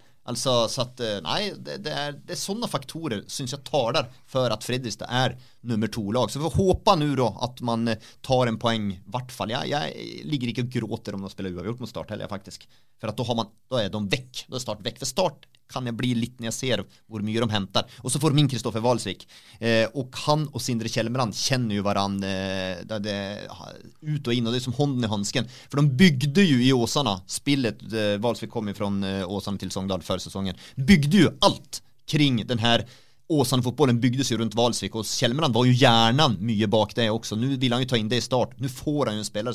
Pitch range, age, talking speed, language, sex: 105-130 Hz, 30-49, 230 wpm, English, male